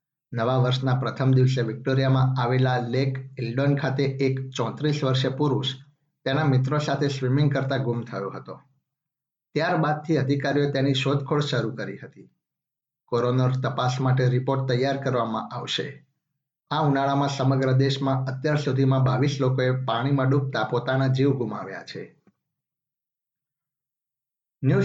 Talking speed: 90 wpm